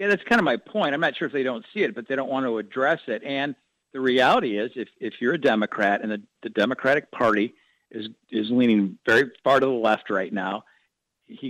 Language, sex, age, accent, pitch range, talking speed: English, male, 50-69, American, 110-135 Hz, 240 wpm